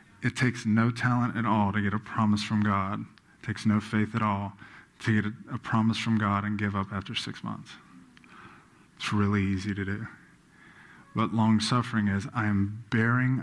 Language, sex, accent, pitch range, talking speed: English, male, American, 100-110 Hz, 190 wpm